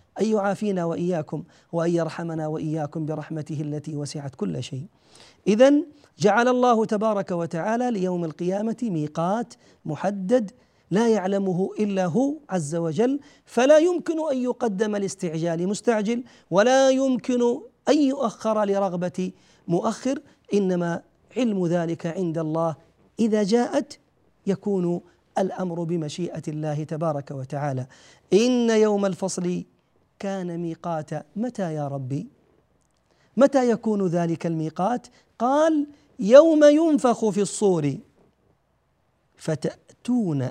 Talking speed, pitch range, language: 100 wpm, 170-245 Hz, Arabic